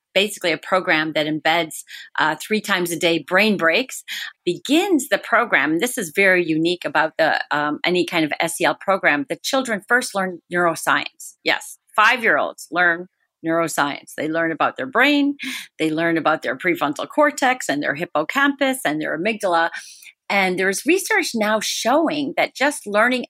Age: 40-59